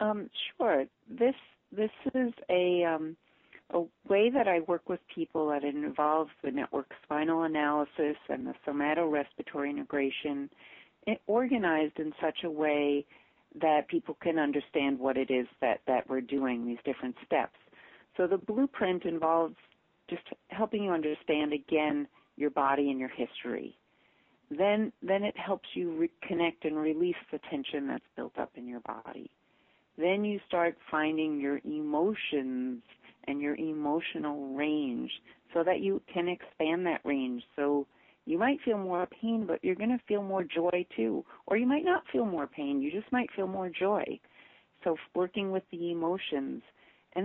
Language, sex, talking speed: English, female, 155 wpm